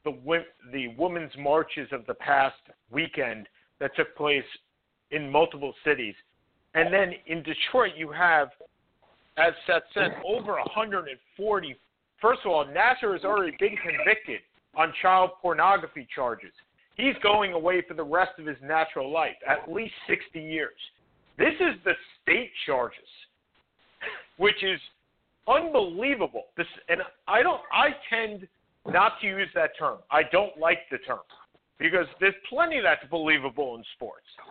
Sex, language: male, English